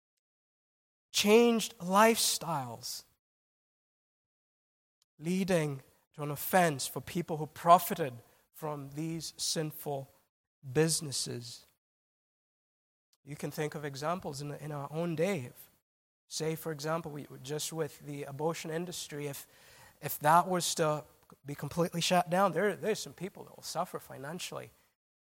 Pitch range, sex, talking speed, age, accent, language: 145-195 Hz, male, 120 wpm, 20-39, American, English